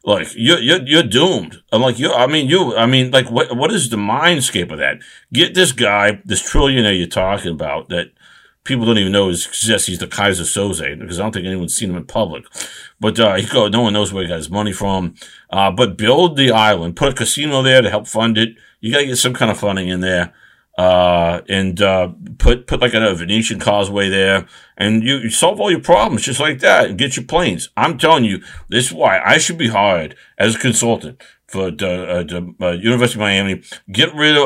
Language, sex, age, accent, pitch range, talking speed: English, male, 50-69, American, 90-120 Hz, 230 wpm